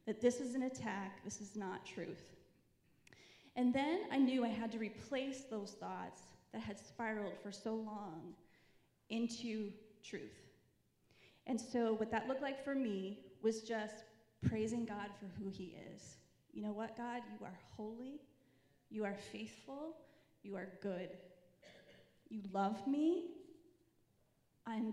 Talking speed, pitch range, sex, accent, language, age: 145 wpm, 205-235 Hz, female, American, English, 30-49